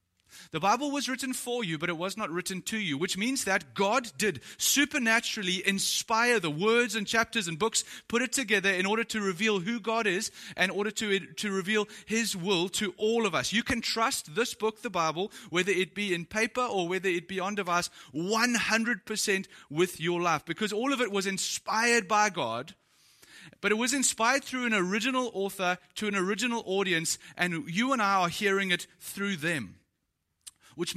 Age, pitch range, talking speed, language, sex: 30-49, 175-225 Hz, 195 wpm, English, male